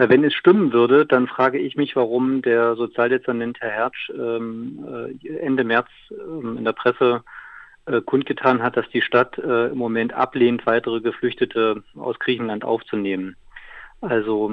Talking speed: 130 wpm